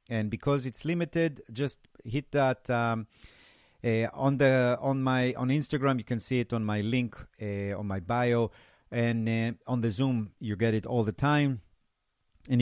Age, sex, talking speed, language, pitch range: 40-59, male, 180 wpm, English, 100-125 Hz